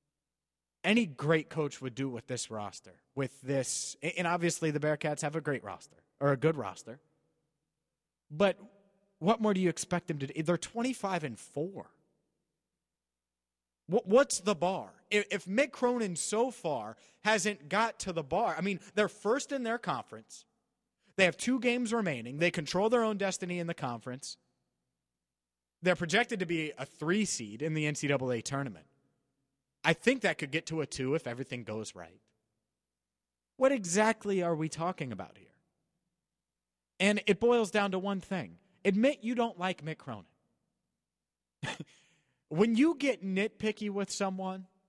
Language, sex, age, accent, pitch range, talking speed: English, male, 30-49, American, 135-200 Hz, 155 wpm